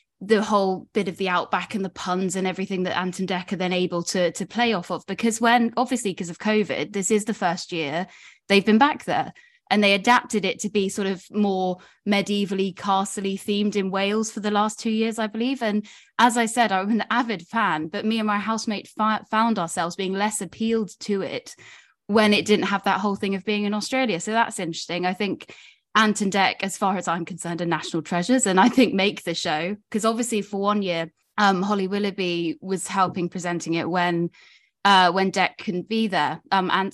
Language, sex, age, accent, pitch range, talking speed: English, female, 20-39, British, 180-220 Hz, 215 wpm